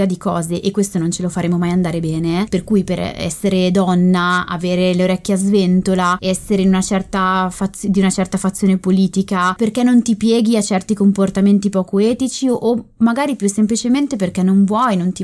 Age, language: 20-39, Italian